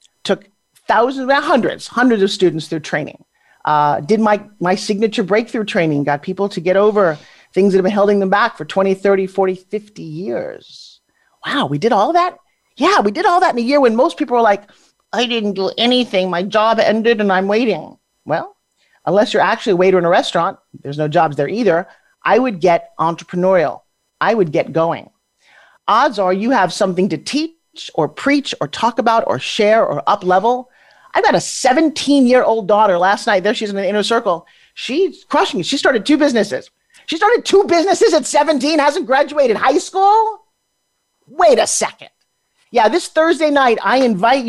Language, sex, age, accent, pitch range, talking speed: English, male, 40-59, American, 190-275 Hz, 190 wpm